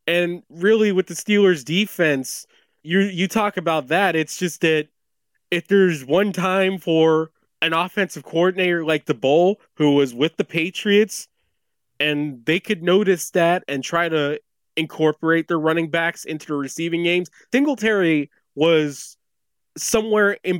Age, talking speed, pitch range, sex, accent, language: 20-39, 145 wpm, 145-185 Hz, male, American, English